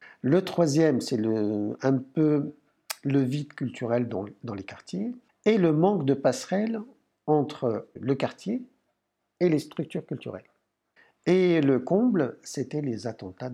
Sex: male